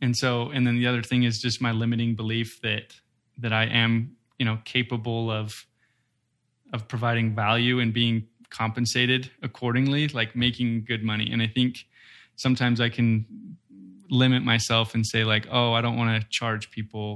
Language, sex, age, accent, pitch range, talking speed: English, male, 20-39, American, 110-125 Hz, 170 wpm